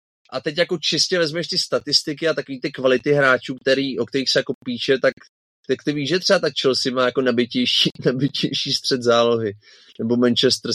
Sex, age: male, 30-49